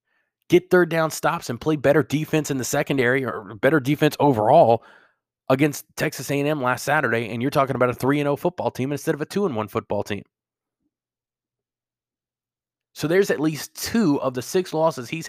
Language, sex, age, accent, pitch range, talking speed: English, male, 20-39, American, 130-160 Hz, 175 wpm